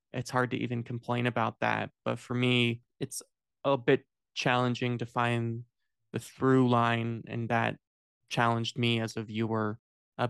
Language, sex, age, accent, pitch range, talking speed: English, male, 20-39, American, 110-125 Hz, 155 wpm